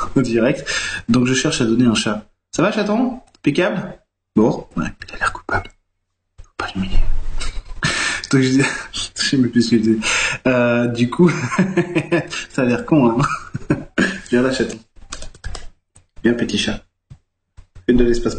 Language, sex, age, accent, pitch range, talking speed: French, male, 20-39, French, 105-140 Hz, 155 wpm